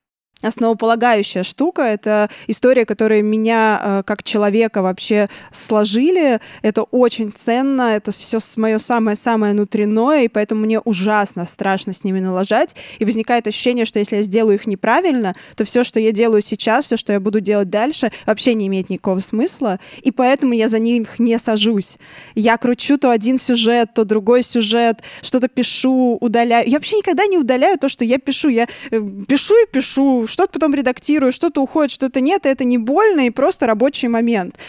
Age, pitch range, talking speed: 20-39, 215-255 Hz, 170 wpm